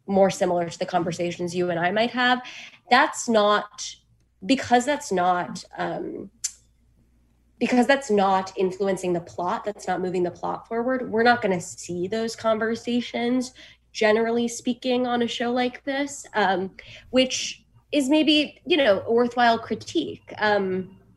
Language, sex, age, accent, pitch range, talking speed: English, female, 20-39, American, 180-235 Hz, 140 wpm